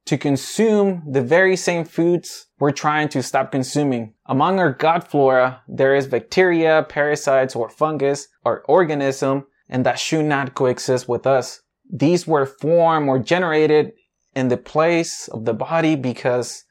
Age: 20-39